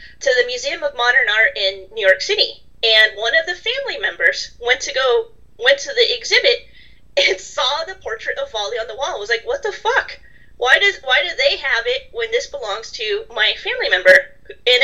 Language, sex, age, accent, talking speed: English, female, 30-49, American, 215 wpm